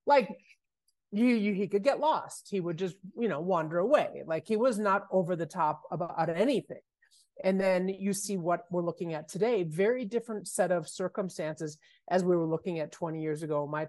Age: 30-49